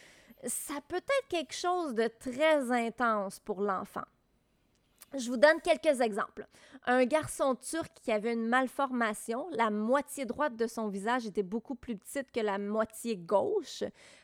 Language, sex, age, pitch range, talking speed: French, female, 30-49, 220-270 Hz, 150 wpm